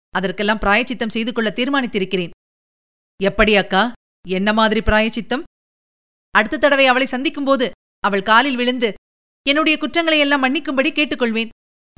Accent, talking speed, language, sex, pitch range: native, 105 wpm, Tamil, female, 200-260 Hz